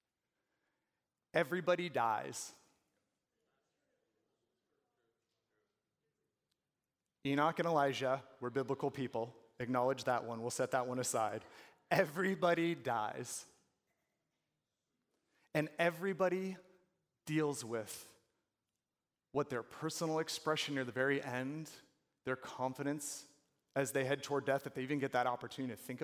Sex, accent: male, American